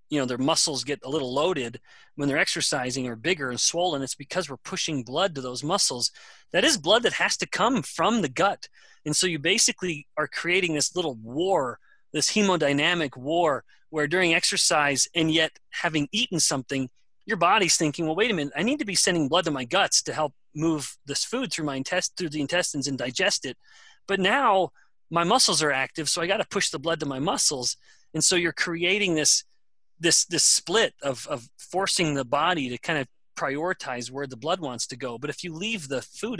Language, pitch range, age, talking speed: English, 135-175 Hz, 30-49, 210 wpm